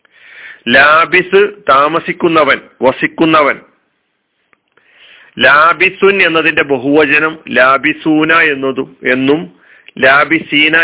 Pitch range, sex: 135-165 Hz, male